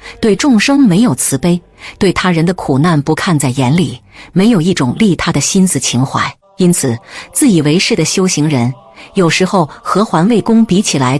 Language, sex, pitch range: Chinese, female, 140-215 Hz